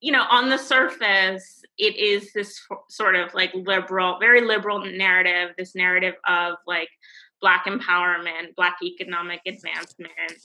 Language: English